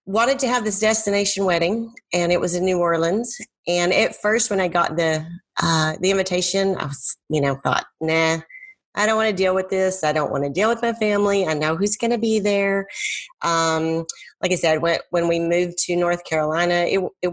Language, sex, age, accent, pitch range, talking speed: English, female, 30-49, American, 160-190 Hz, 220 wpm